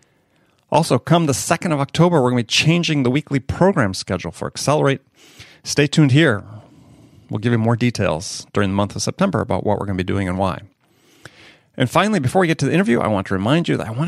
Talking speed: 235 wpm